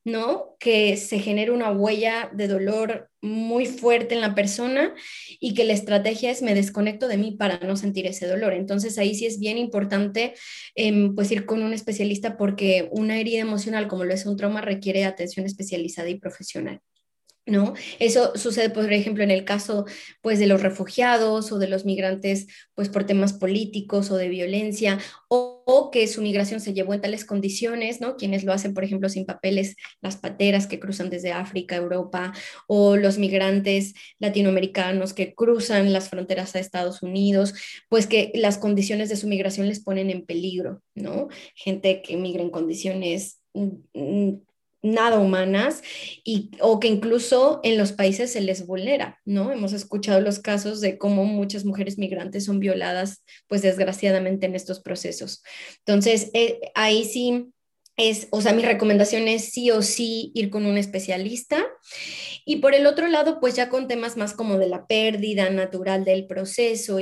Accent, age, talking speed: Mexican, 20-39, 170 wpm